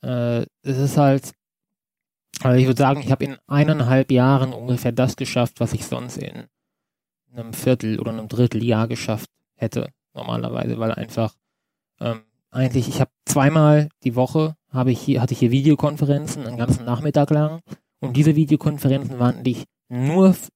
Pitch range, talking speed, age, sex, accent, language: 120-140 Hz, 160 wpm, 20-39, male, German, German